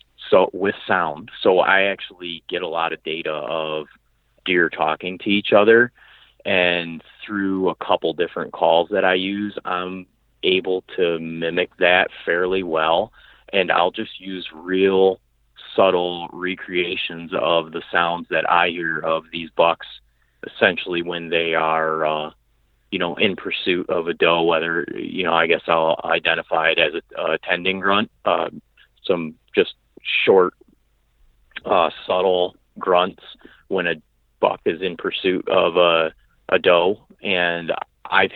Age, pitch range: 30-49, 85-90 Hz